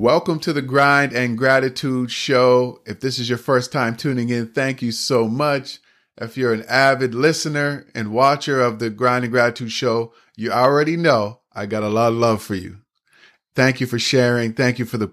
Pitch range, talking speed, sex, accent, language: 110-125 Hz, 200 wpm, male, American, English